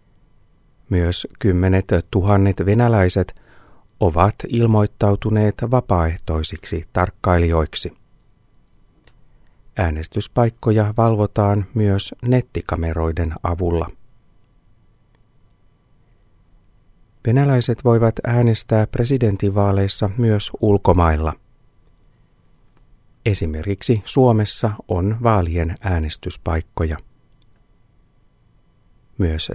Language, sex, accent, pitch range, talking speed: Finnish, male, native, 90-115 Hz, 50 wpm